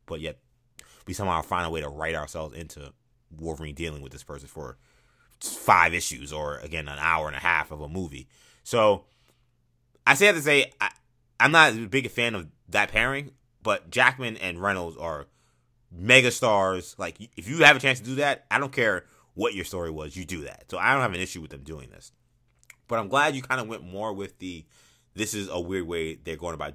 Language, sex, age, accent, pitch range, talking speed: English, male, 20-39, American, 90-130 Hz, 220 wpm